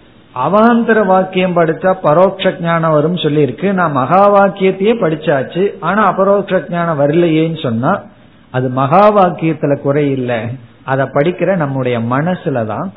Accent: native